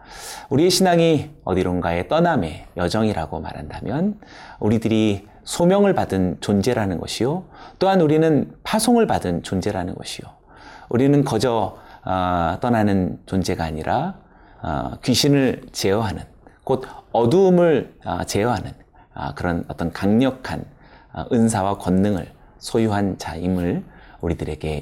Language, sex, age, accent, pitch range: Korean, male, 30-49, native, 90-145 Hz